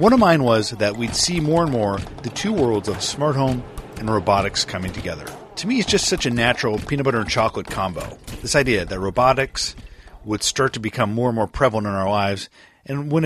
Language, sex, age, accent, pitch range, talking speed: English, male, 40-59, American, 110-170 Hz, 220 wpm